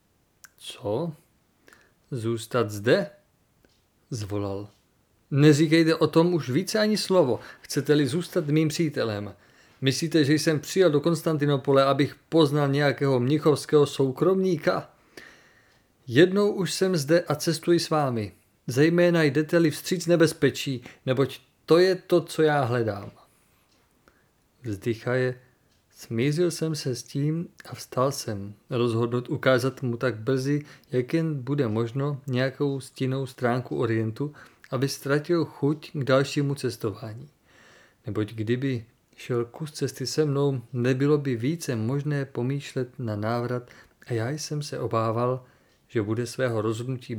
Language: Czech